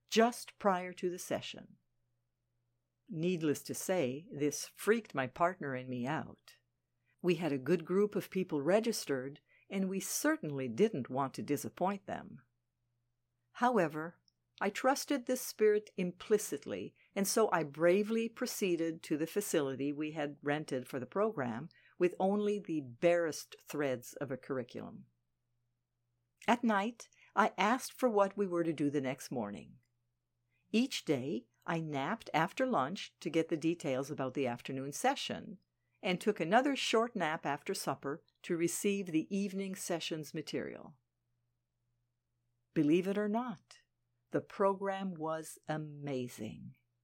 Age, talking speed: 60-79, 135 wpm